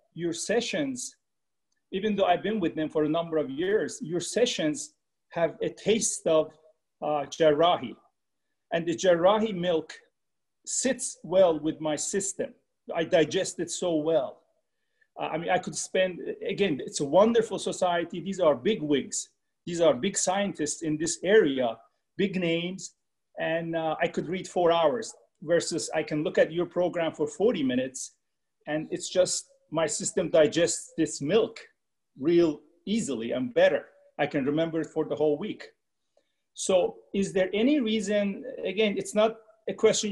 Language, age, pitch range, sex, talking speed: English, 40-59, 160-210 Hz, male, 160 wpm